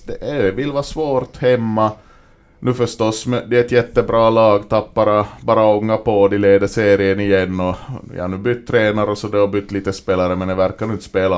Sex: male